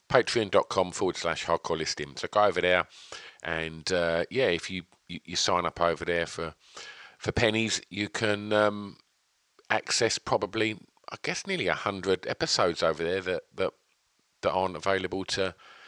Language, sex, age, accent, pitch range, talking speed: English, male, 40-59, British, 90-110 Hz, 160 wpm